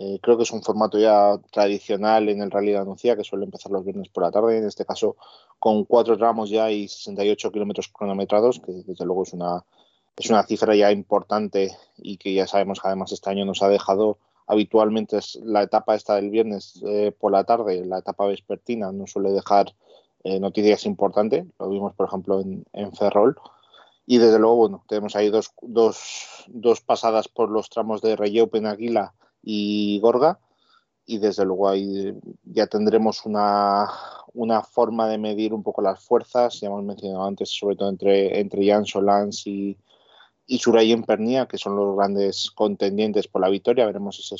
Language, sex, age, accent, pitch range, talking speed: Spanish, male, 20-39, Spanish, 100-110 Hz, 185 wpm